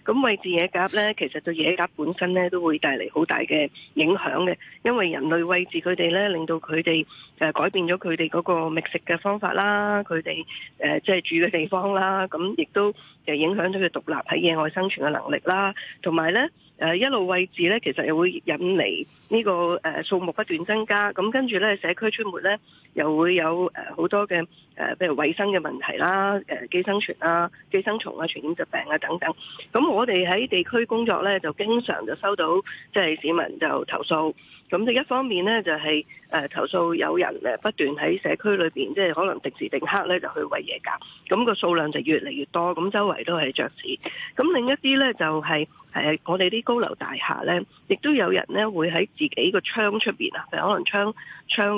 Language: Chinese